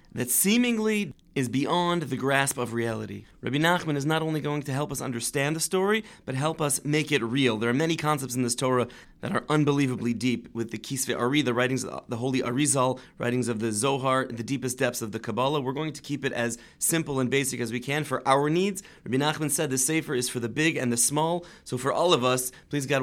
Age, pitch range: 30-49, 120-150 Hz